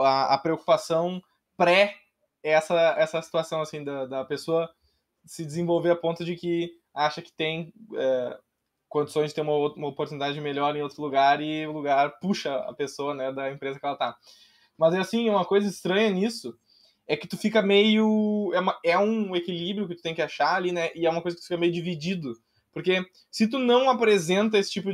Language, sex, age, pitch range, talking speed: Portuguese, male, 10-29, 145-185 Hz, 195 wpm